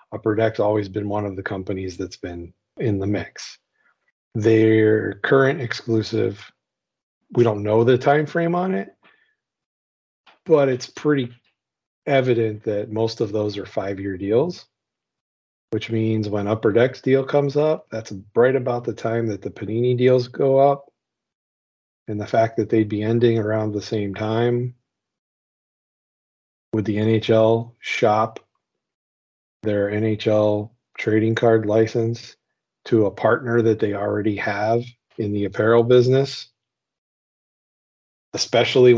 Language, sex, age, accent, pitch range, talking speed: English, male, 40-59, American, 105-125 Hz, 130 wpm